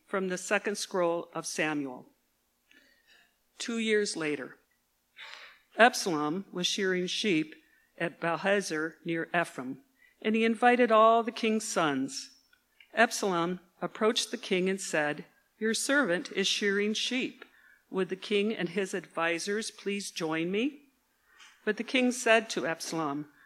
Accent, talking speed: American, 130 wpm